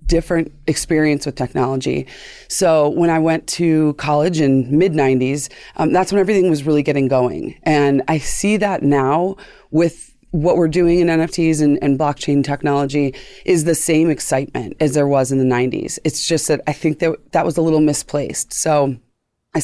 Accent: American